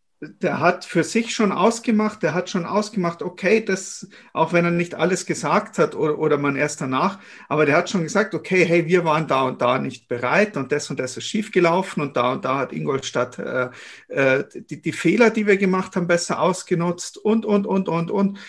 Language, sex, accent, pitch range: German, male, German, 150-195 Hz